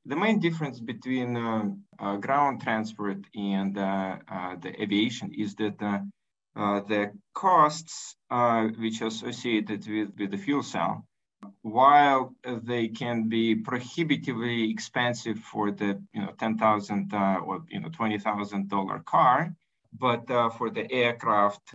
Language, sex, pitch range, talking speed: English, male, 100-125 Hz, 145 wpm